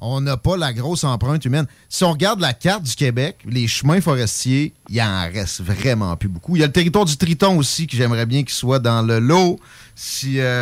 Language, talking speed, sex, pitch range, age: French, 235 wpm, male, 115-150 Hz, 30-49